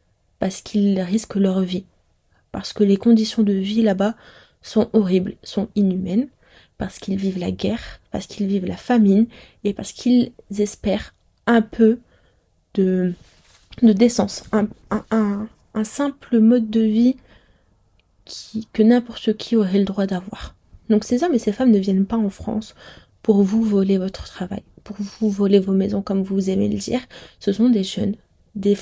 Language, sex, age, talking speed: French, female, 20-39, 165 wpm